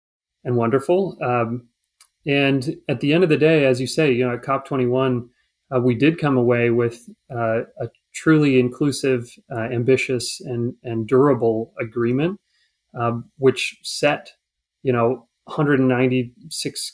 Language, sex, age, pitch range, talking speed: English, male, 30-49, 125-145 Hz, 140 wpm